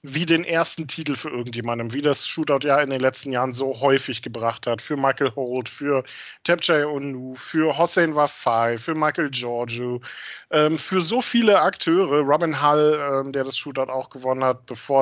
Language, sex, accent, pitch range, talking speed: German, male, German, 140-185 Hz, 180 wpm